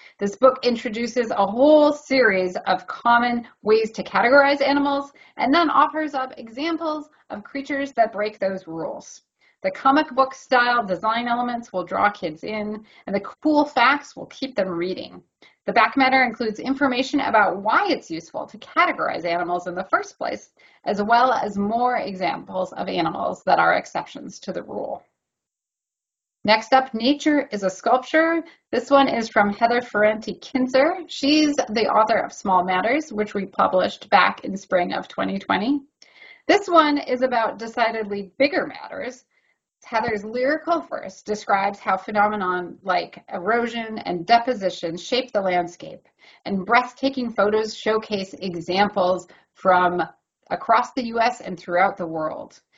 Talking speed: 145 wpm